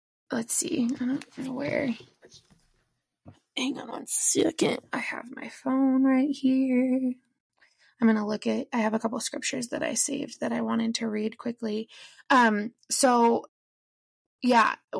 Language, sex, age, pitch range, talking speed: English, female, 20-39, 210-255 Hz, 150 wpm